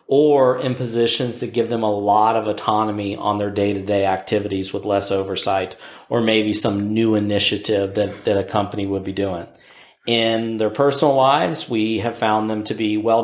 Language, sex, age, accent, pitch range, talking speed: English, male, 40-59, American, 110-125 Hz, 190 wpm